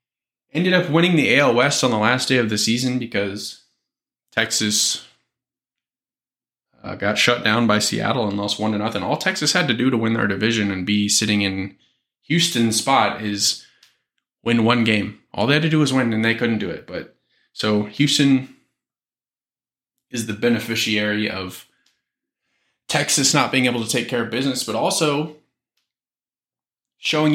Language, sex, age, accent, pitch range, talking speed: English, male, 20-39, American, 110-135 Hz, 165 wpm